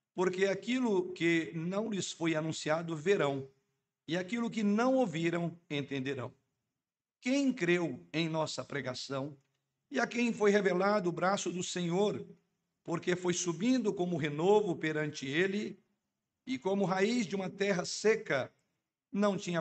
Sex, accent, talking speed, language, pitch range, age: male, Brazilian, 135 wpm, Portuguese, 155-200 Hz, 50-69